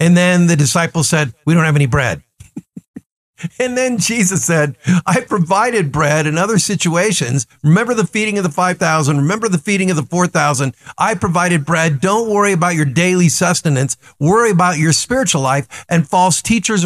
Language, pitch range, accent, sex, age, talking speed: English, 150-200 Hz, American, male, 50-69, 175 wpm